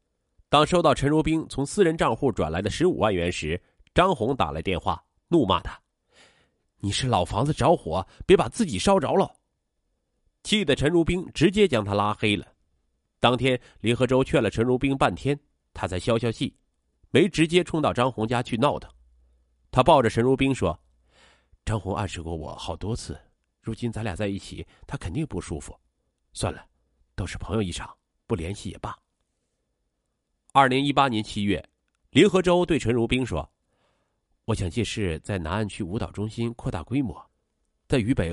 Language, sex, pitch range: Chinese, male, 85-135 Hz